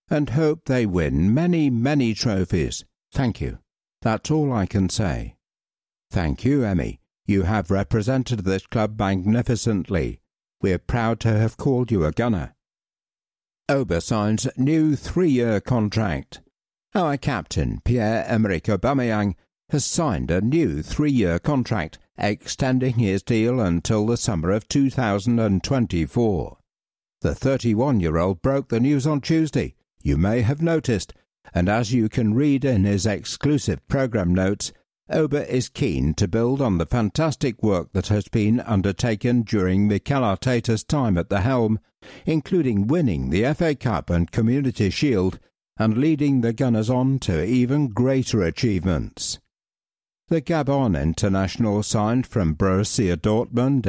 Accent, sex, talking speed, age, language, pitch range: British, male, 130 wpm, 60-79, English, 95-130 Hz